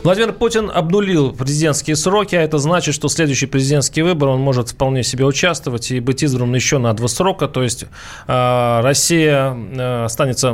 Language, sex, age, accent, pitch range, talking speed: Russian, male, 20-39, native, 130-170 Hz, 160 wpm